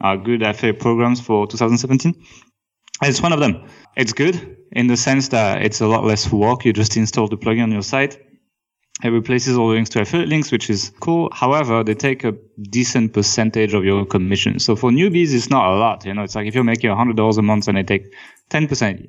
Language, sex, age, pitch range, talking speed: English, male, 20-39, 105-125 Hz, 230 wpm